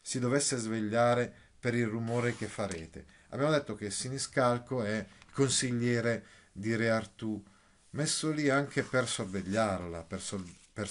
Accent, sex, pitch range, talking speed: native, male, 100-135 Hz, 130 wpm